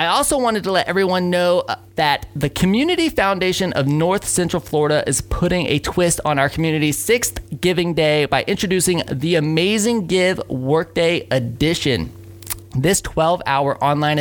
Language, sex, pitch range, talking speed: English, male, 125-180 Hz, 150 wpm